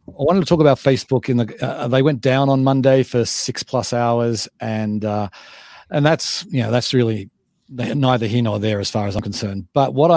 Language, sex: English, male